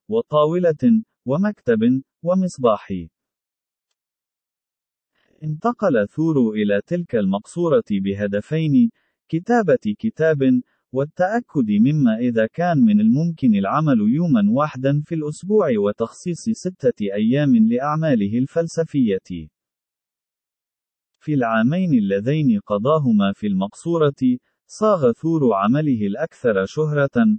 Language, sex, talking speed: Arabic, male, 85 wpm